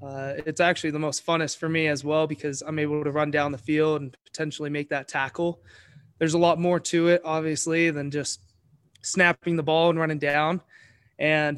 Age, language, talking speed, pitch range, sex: 20-39, English, 200 wpm, 145-165 Hz, male